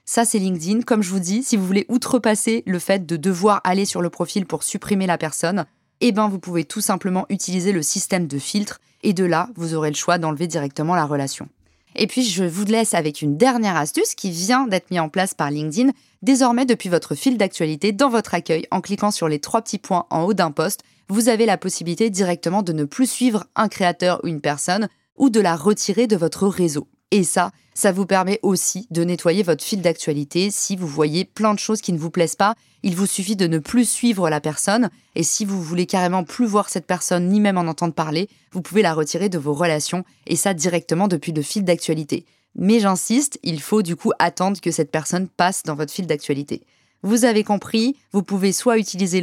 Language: French